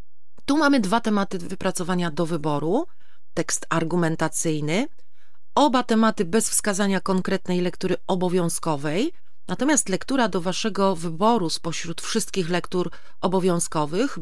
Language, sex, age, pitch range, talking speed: Polish, female, 40-59, 170-220 Hz, 105 wpm